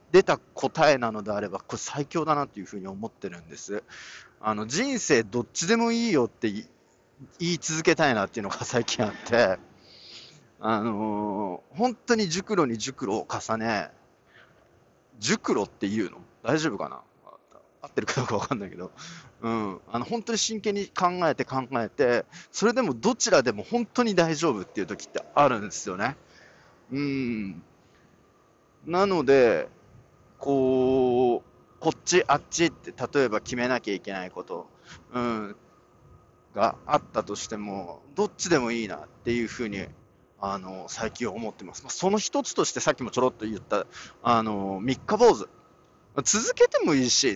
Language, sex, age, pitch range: Japanese, male, 40-59, 110-175 Hz